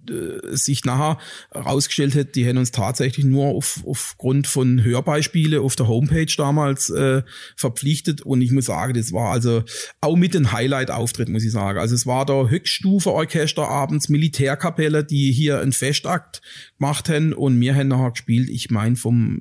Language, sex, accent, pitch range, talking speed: German, male, German, 120-145 Hz, 165 wpm